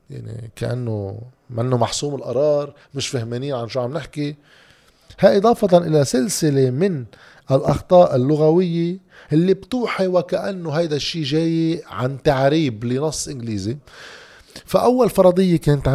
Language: Arabic